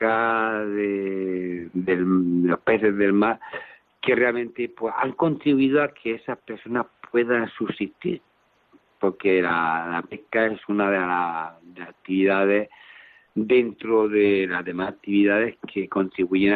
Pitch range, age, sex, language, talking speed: 95-120 Hz, 50-69, male, Spanish, 125 wpm